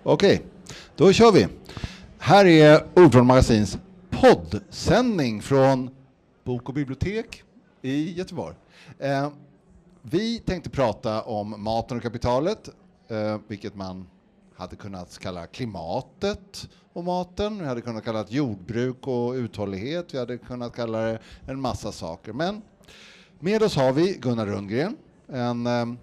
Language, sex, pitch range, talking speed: Swedish, male, 115-170 Hz, 125 wpm